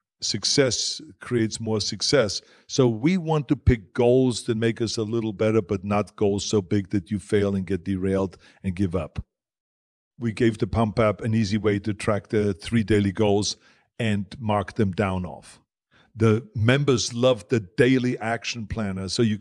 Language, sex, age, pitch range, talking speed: English, male, 50-69, 100-115 Hz, 180 wpm